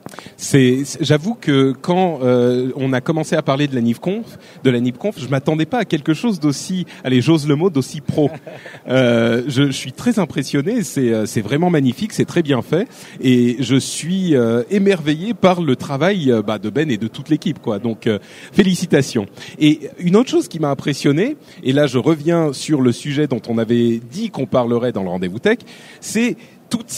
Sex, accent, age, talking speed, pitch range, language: male, French, 30-49, 200 wpm, 130-180 Hz, French